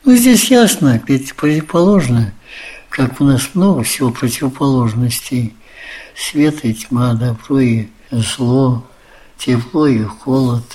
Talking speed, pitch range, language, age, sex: 110 wpm, 115-140 Hz, Russian, 60-79, male